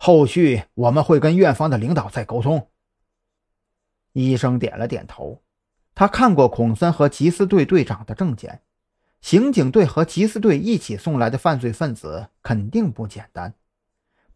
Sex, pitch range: male, 115-170 Hz